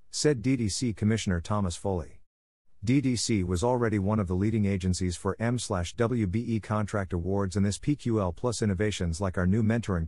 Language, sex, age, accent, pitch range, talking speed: English, male, 50-69, American, 90-115 Hz, 155 wpm